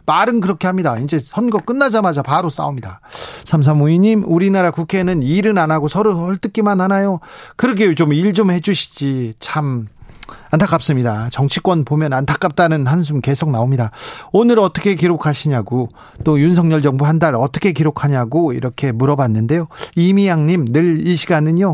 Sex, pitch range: male, 135-175 Hz